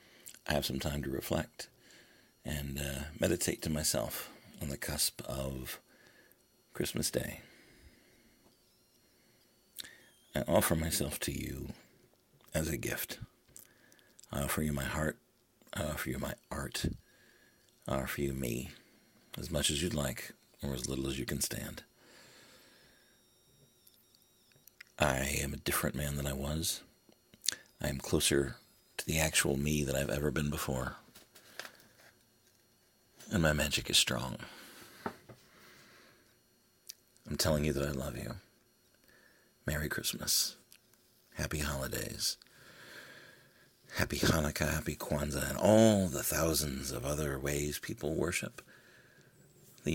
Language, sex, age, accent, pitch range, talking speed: English, male, 60-79, American, 70-80 Hz, 120 wpm